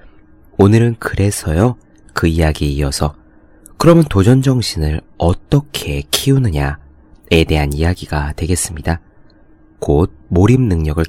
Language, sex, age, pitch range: Korean, male, 30-49, 75-110 Hz